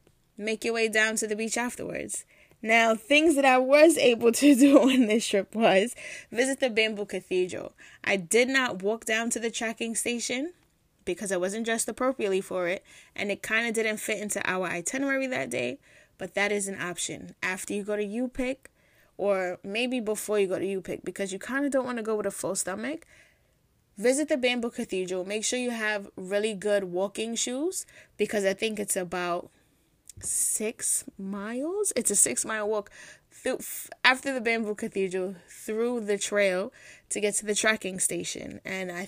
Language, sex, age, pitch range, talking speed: English, female, 10-29, 195-245 Hz, 185 wpm